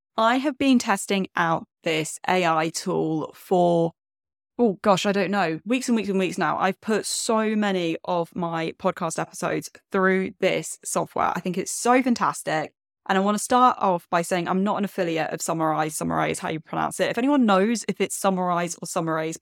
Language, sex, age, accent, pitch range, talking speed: English, female, 20-39, British, 170-210 Hz, 195 wpm